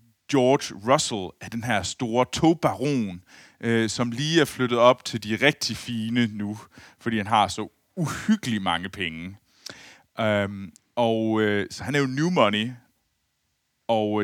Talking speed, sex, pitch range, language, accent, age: 150 wpm, male, 105-135 Hz, Danish, native, 30-49